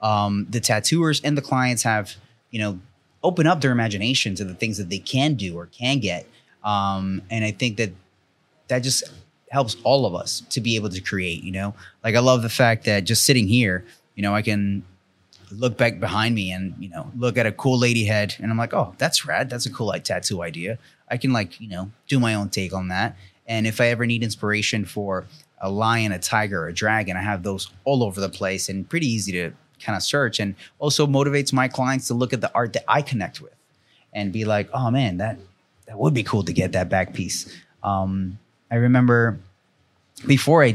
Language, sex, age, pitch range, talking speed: English, male, 30-49, 100-125 Hz, 225 wpm